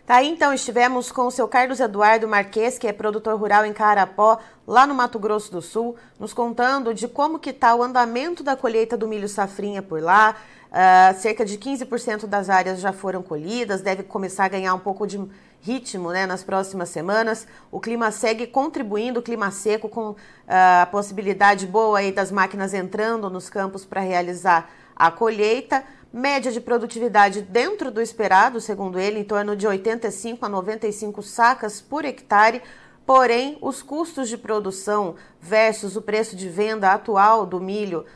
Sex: female